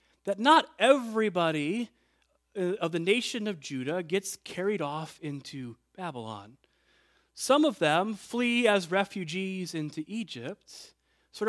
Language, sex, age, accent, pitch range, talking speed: English, male, 30-49, American, 150-210 Hz, 115 wpm